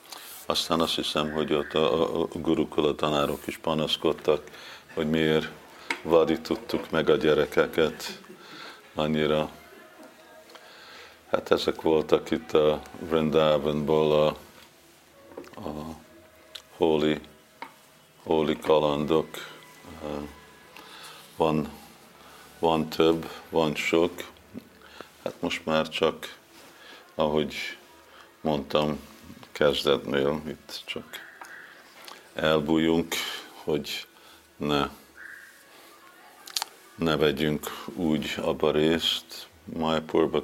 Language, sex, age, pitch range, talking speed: Hungarian, male, 50-69, 75-80 Hz, 80 wpm